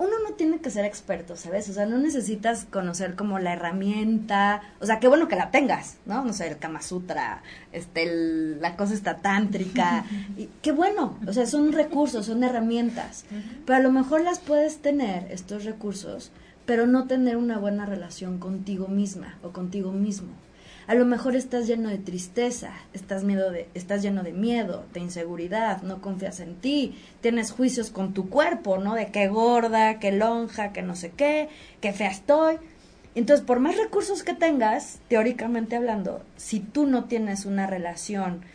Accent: Mexican